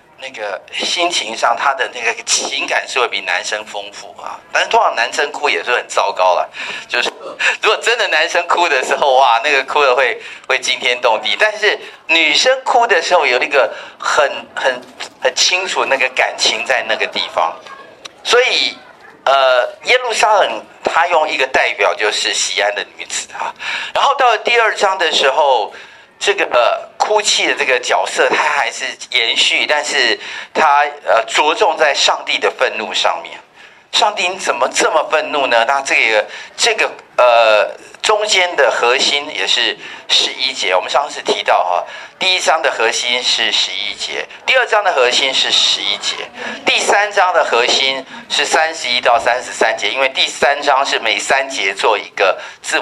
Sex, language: male, Chinese